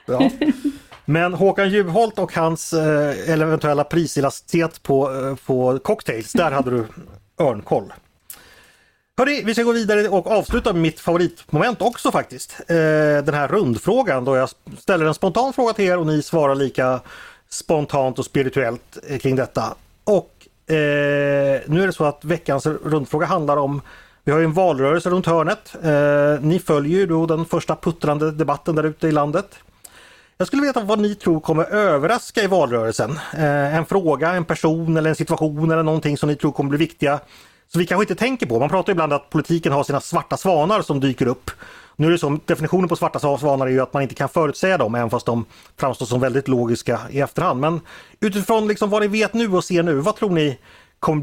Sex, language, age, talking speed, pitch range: male, Swedish, 30-49, 190 wpm, 135-175 Hz